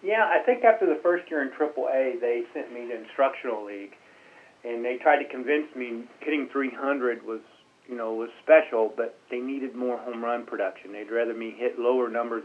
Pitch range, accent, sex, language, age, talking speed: 115-135 Hz, American, male, English, 40-59, 200 wpm